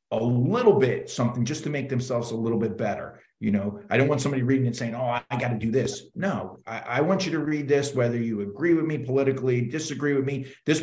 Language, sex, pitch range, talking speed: English, male, 110-135 Hz, 250 wpm